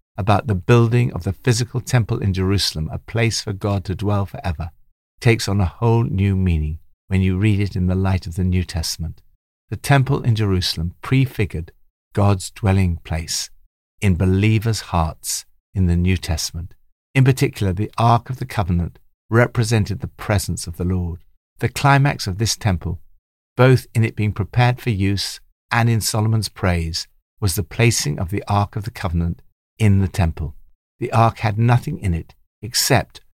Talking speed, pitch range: 175 wpm, 85-115 Hz